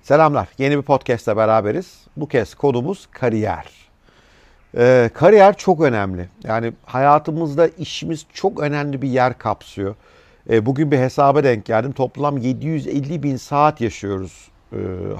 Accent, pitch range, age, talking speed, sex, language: native, 110-150 Hz, 50-69, 130 wpm, male, Turkish